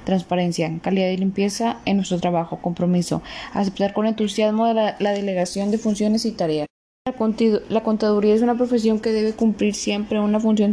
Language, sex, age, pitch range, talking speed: Spanish, female, 10-29, 195-215 Hz, 170 wpm